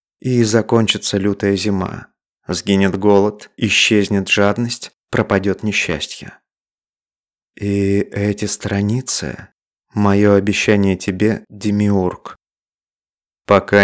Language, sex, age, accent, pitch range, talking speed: Russian, male, 30-49, native, 100-110 Hz, 80 wpm